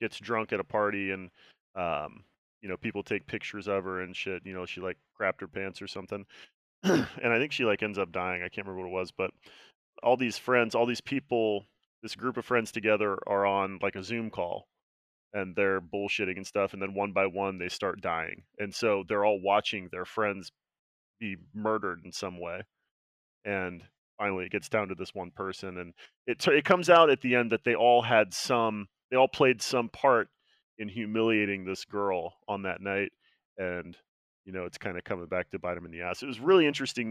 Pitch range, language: 95-115 Hz, English